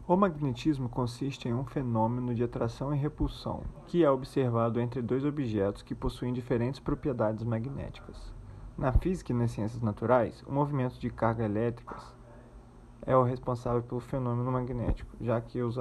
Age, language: 20-39, Portuguese